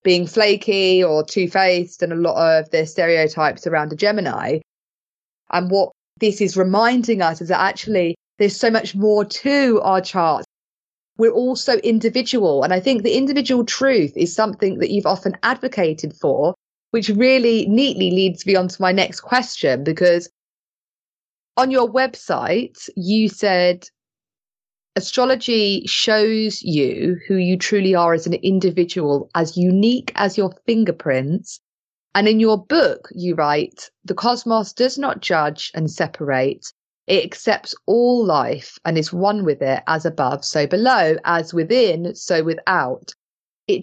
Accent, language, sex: British, English, female